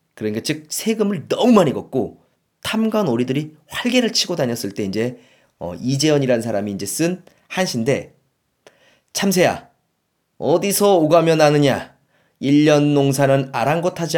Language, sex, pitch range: Korean, male, 120-170 Hz